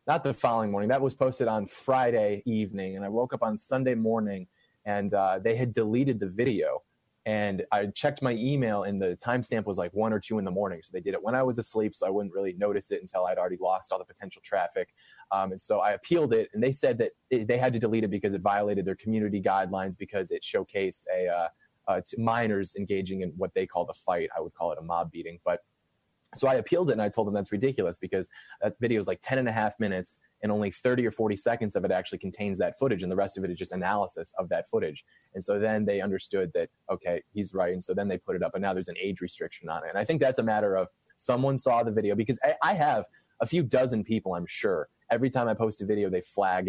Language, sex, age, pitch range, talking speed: English, male, 20-39, 95-120 Hz, 260 wpm